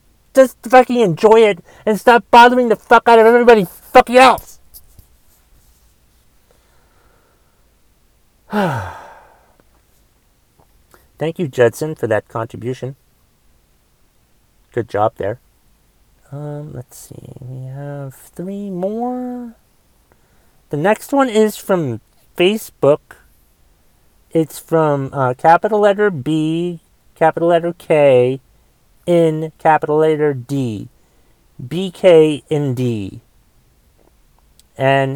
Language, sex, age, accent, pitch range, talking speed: English, male, 40-59, American, 125-190 Hz, 90 wpm